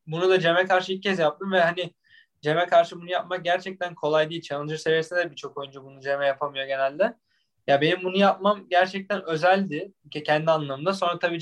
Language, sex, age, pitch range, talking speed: Turkish, male, 20-39, 155-205 Hz, 185 wpm